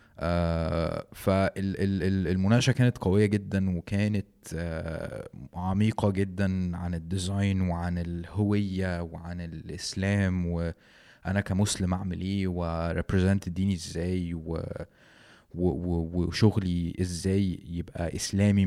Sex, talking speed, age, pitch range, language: male, 95 wpm, 20-39, 85-100 Hz, Arabic